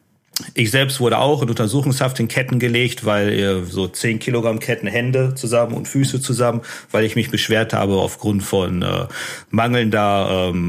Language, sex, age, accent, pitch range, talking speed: German, male, 40-59, German, 100-120 Hz, 170 wpm